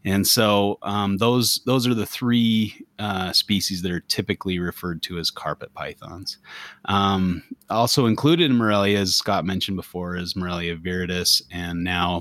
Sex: male